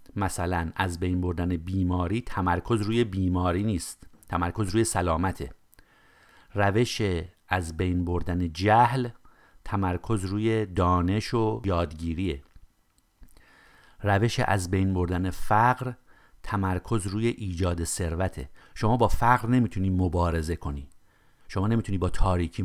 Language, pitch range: Persian, 85-110 Hz